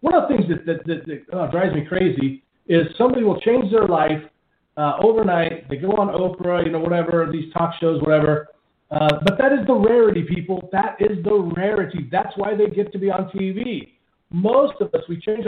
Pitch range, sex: 155-210 Hz, male